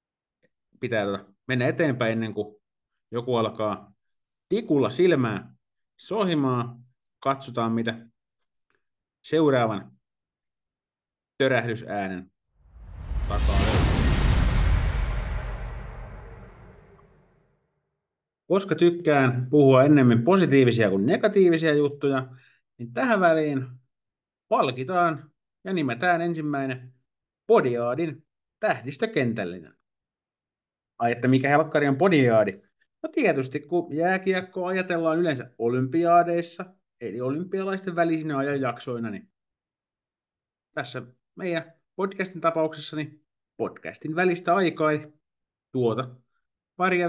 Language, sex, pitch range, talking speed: Finnish, male, 120-165 Hz, 75 wpm